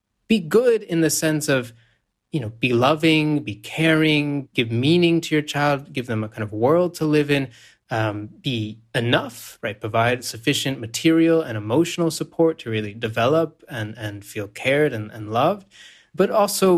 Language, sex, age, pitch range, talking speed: English, male, 20-39, 110-150 Hz, 170 wpm